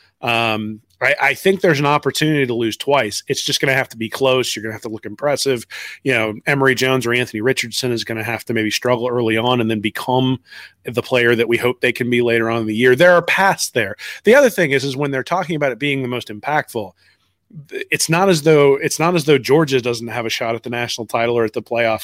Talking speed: 260 wpm